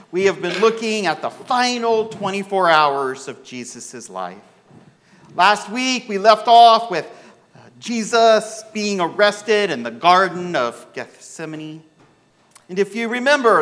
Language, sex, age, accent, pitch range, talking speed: English, male, 50-69, American, 150-215 Hz, 130 wpm